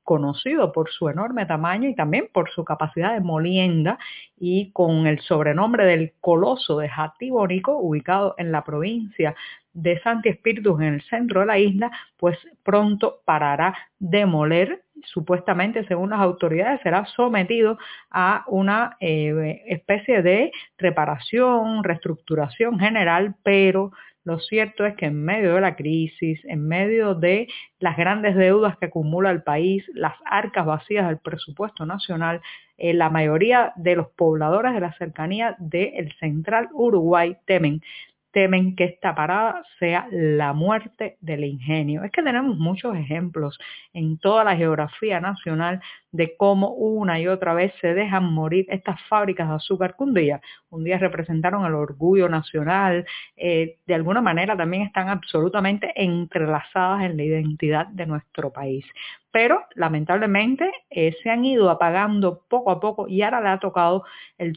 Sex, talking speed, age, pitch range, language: female, 150 wpm, 50-69, 165-205 Hz, Spanish